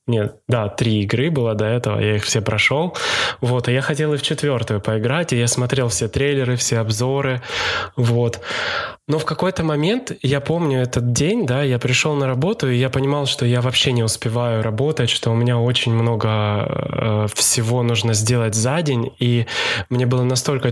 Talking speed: 185 wpm